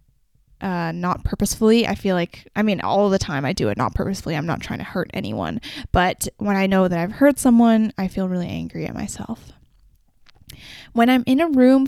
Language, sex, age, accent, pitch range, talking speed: English, female, 10-29, American, 190-235 Hz, 205 wpm